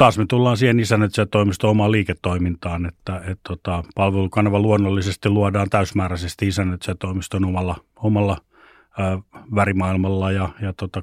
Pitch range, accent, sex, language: 95-110 Hz, native, male, Finnish